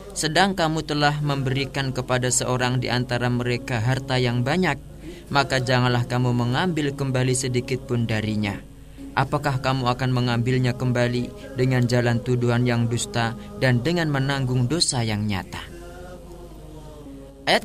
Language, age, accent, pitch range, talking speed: Indonesian, 20-39, native, 125-155 Hz, 120 wpm